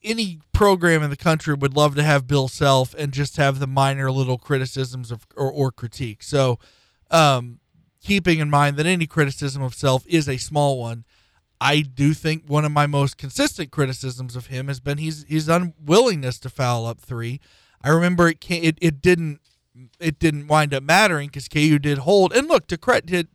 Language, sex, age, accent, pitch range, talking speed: English, male, 40-59, American, 135-175 Hz, 195 wpm